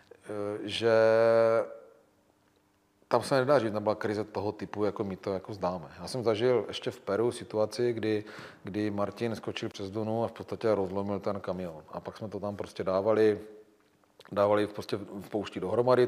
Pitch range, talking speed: 100-115 Hz, 170 wpm